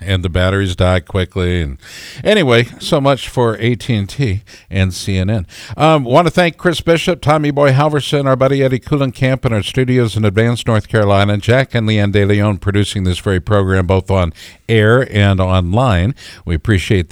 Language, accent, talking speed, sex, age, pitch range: English, American, 170 wpm, male, 60-79, 95-130 Hz